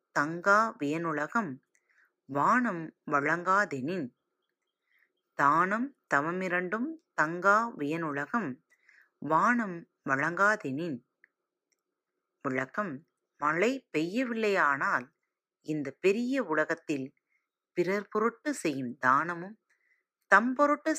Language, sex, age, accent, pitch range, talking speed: Tamil, female, 30-49, native, 150-240 Hz, 50 wpm